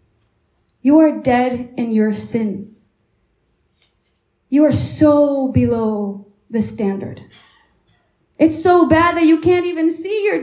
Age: 20-39